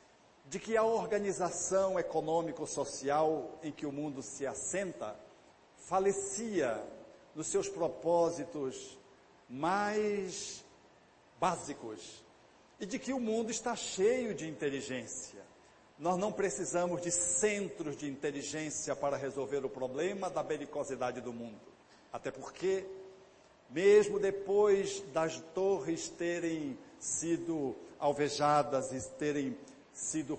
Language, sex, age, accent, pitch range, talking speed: Portuguese, male, 60-79, Brazilian, 155-205 Hz, 105 wpm